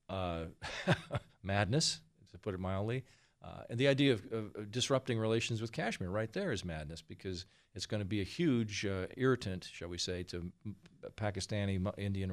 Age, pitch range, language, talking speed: 40-59, 90-120 Hz, English, 170 wpm